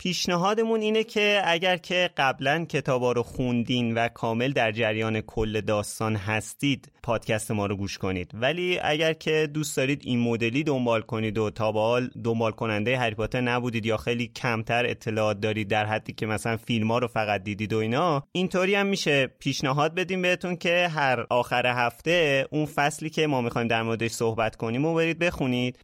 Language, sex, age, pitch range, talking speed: Persian, male, 30-49, 110-155 Hz, 170 wpm